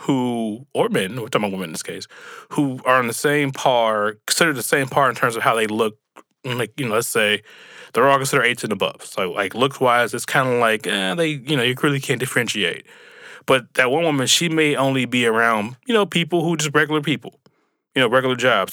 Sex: male